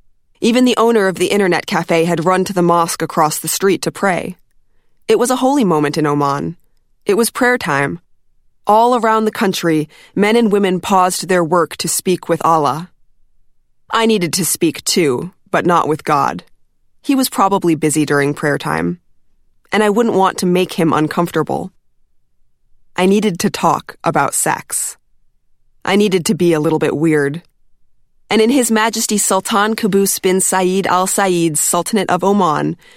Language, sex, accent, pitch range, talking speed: English, female, American, 165-210 Hz, 170 wpm